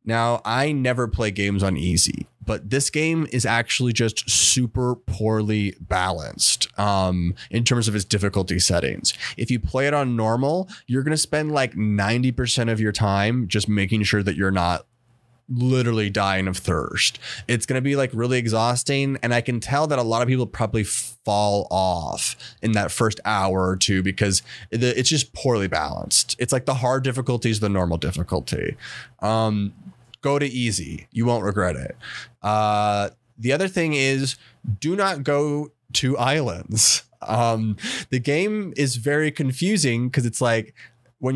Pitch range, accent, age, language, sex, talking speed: 100-130 Hz, American, 20-39, English, male, 160 wpm